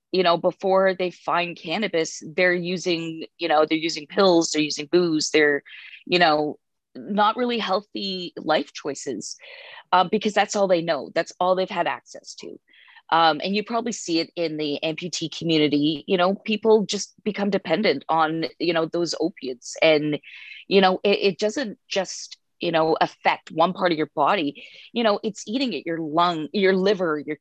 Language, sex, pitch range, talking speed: English, female, 160-205 Hz, 180 wpm